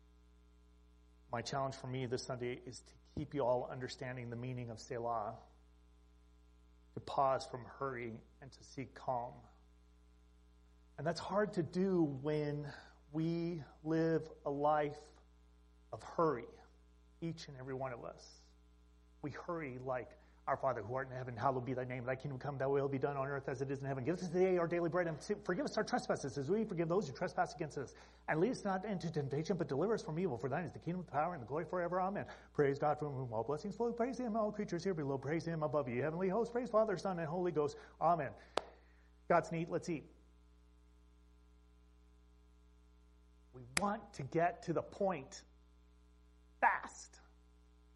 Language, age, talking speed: English, 30-49, 190 wpm